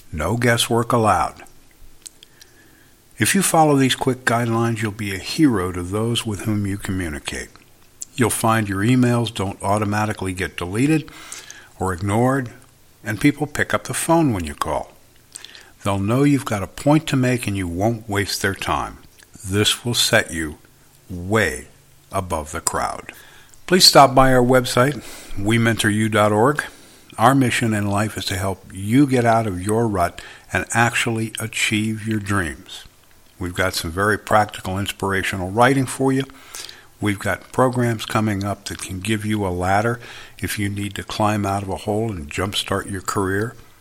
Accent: American